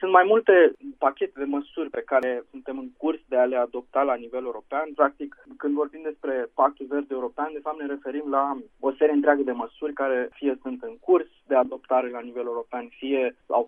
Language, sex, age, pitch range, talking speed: Romanian, male, 20-39, 125-150 Hz, 205 wpm